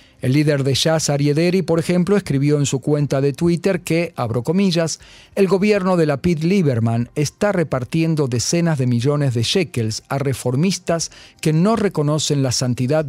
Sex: male